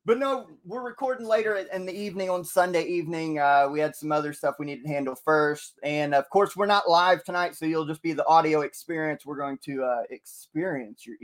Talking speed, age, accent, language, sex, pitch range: 225 wpm, 20-39, American, English, male, 145-190 Hz